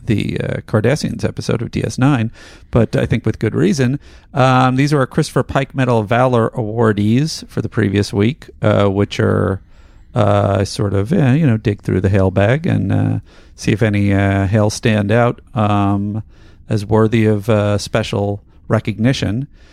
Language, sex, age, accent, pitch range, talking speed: English, male, 40-59, American, 105-125 Hz, 165 wpm